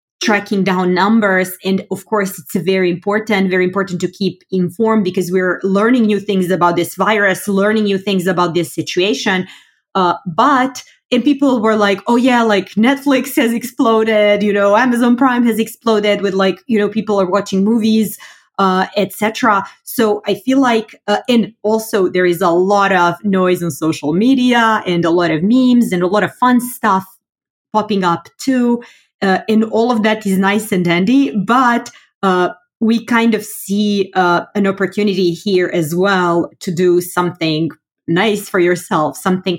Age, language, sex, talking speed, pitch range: 20-39, English, female, 175 wpm, 180-220 Hz